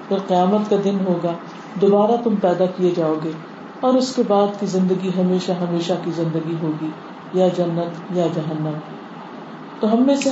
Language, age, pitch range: Urdu, 40-59, 185-260 Hz